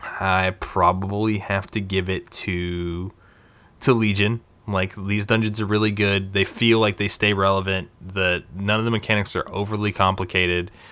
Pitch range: 85-105 Hz